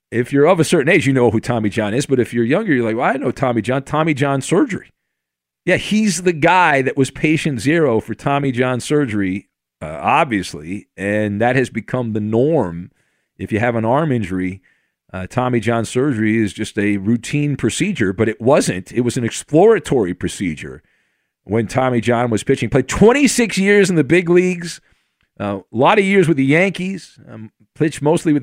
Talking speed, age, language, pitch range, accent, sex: 195 wpm, 40-59, English, 110-150 Hz, American, male